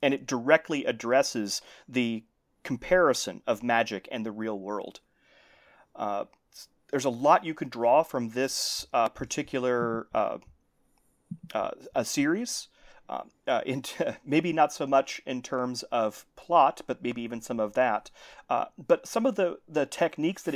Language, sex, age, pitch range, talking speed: English, male, 30-49, 120-155 Hz, 150 wpm